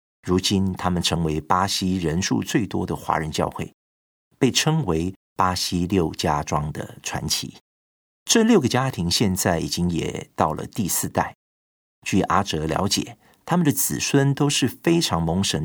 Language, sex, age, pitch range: Chinese, male, 50-69, 80-100 Hz